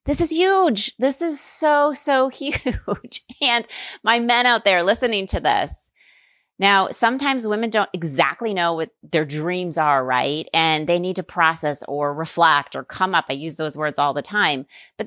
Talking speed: 180 wpm